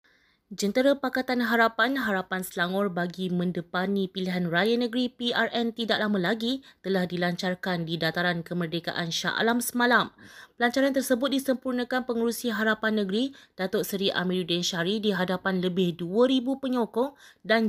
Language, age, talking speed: Malay, 20-39, 130 wpm